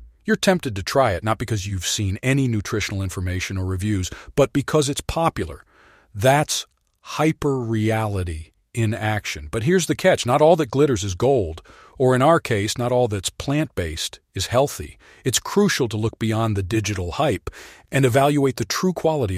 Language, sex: English, male